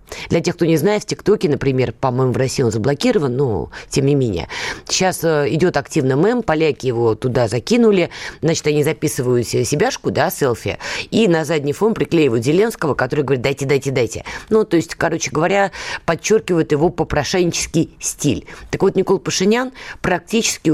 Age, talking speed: 20-39, 160 wpm